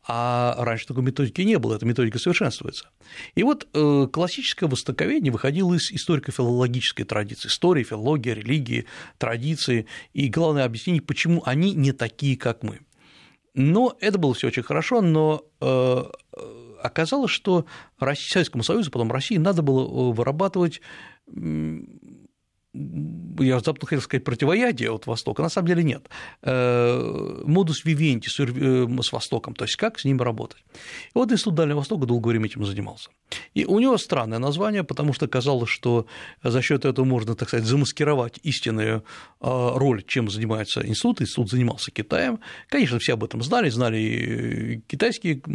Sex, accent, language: male, native, Russian